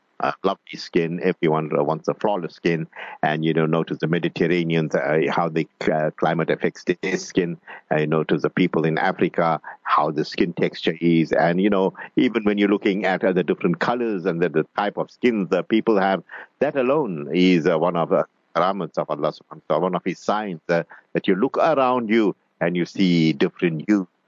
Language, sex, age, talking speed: English, male, 50-69, 205 wpm